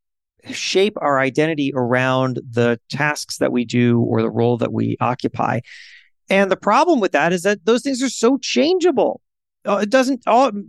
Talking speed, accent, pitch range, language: 175 wpm, American, 135-210 Hz, English